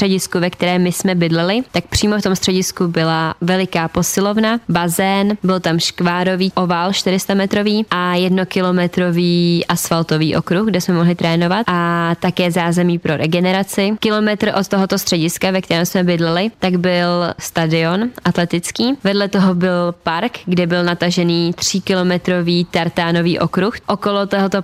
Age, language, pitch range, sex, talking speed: 20-39, Czech, 170-190 Hz, female, 140 wpm